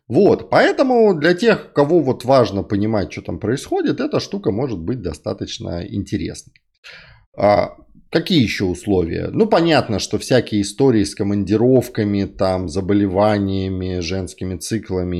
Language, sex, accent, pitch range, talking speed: Russian, male, native, 90-120 Hz, 120 wpm